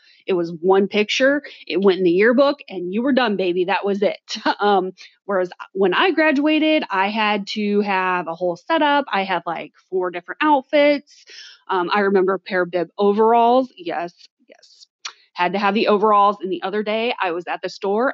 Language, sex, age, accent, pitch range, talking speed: English, female, 30-49, American, 180-230 Hz, 195 wpm